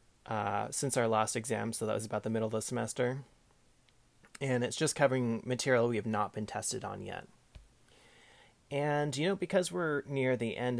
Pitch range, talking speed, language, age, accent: 110-140 Hz, 190 wpm, English, 30-49, American